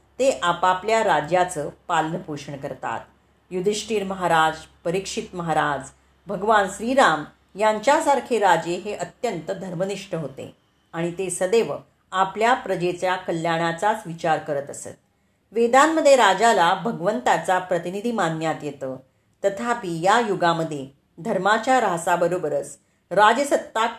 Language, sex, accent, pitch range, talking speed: Marathi, female, native, 165-220 Hz, 95 wpm